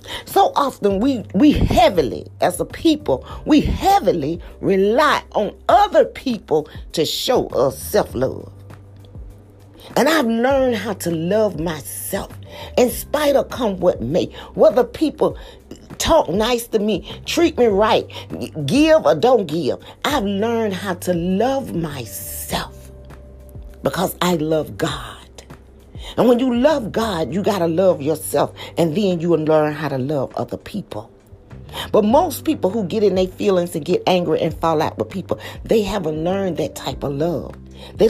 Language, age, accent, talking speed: English, 40-59, American, 155 wpm